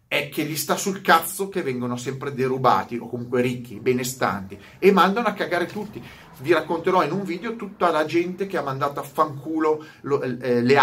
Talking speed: 185 wpm